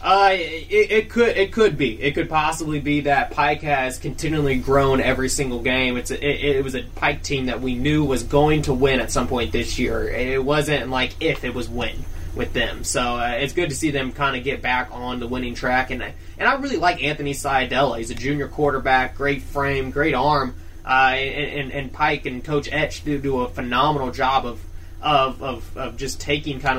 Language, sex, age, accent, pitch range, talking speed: English, male, 20-39, American, 125-150 Hz, 220 wpm